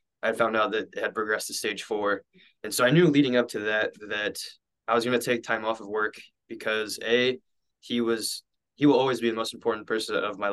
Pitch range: 110-120 Hz